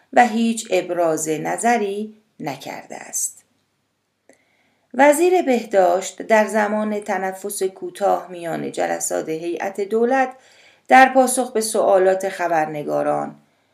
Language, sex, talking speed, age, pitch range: Persian, female, 90 wpm, 40-59, 175-245 Hz